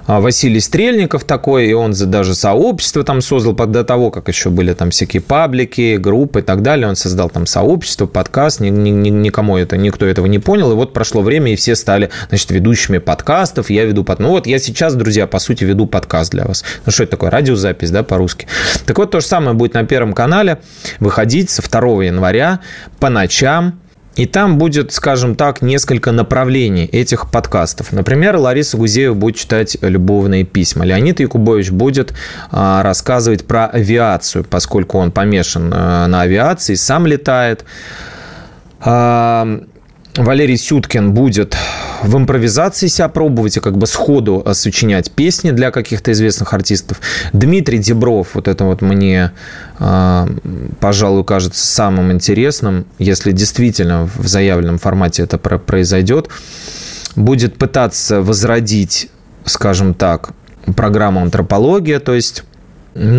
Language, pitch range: Russian, 95-130 Hz